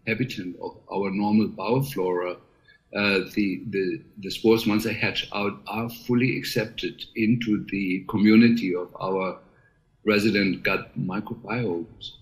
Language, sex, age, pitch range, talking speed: English, male, 50-69, 100-115 Hz, 125 wpm